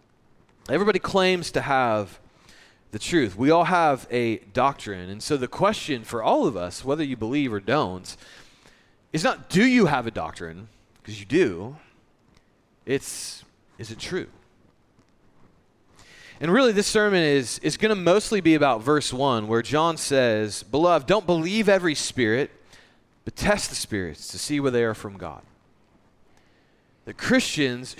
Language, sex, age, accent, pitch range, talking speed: English, male, 30-49, American, 115-165 Hz, 155 wpm